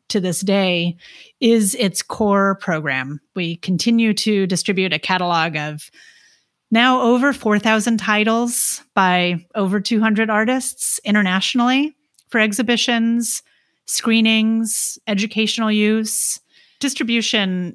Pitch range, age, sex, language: 180-225 Hz, 30-49, female, English